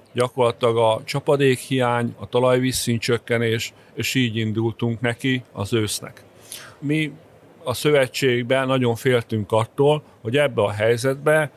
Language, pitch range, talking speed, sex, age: Hungarian, 115-130 Hz, 120 wpm, male, 40-59